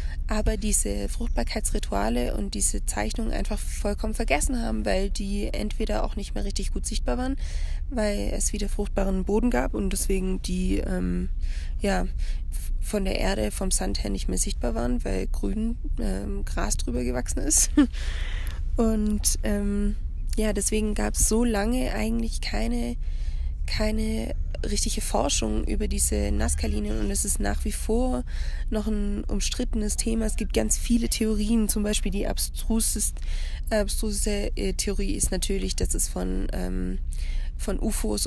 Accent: German